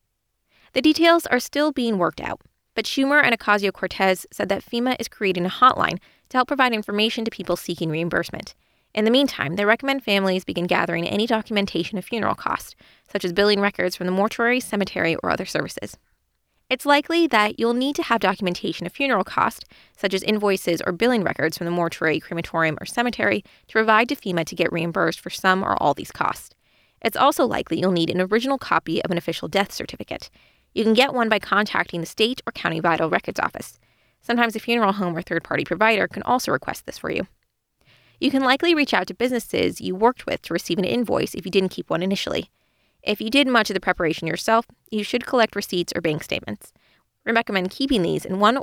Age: 20-39